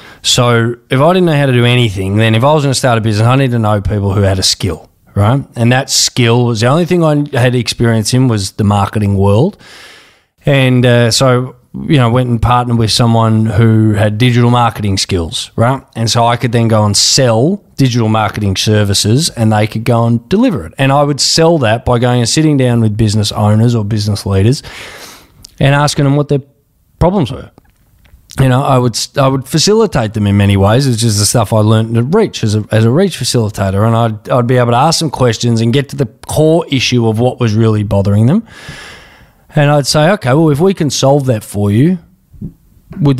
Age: 20-39